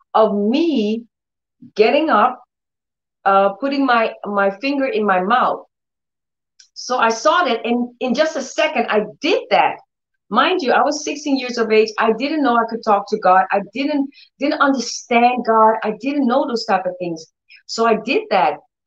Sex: female